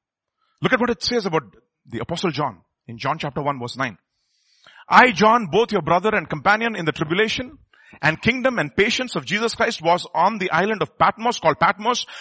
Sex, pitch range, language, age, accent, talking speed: male, 145-220 Hz, English, 40-59, Indian, 195 wpm